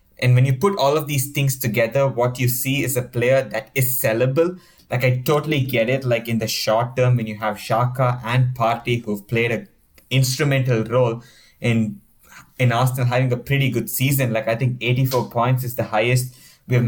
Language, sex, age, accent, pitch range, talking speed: English, male, 20-39, Indian, 120-135 Hz, 200 wpm